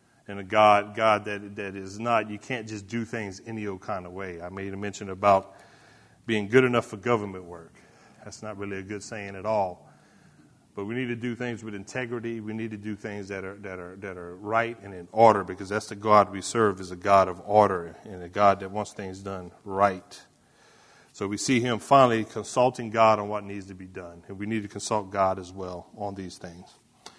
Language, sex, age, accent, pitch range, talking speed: English, male, 40-59, American, 95-115 Hz, 225 wpm